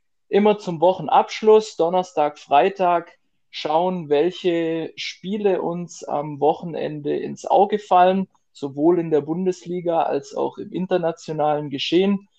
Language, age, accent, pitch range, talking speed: German, 20-39, German, 140-170 Hz, 110 wpm